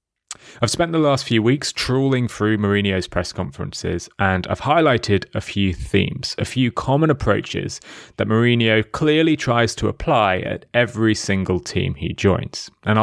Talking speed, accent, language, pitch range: 155 wpm, British, English, 100-130 Hz